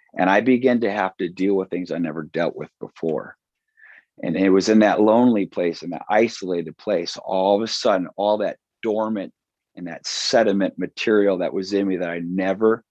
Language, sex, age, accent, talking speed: English, male, 40-59, American, 200 wpm